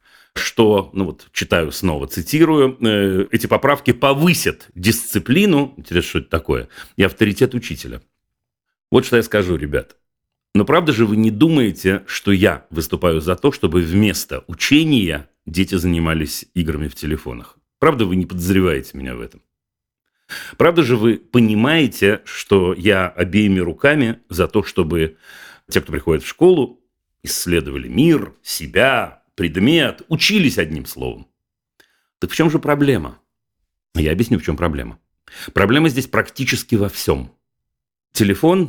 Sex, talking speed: male, 135 wpm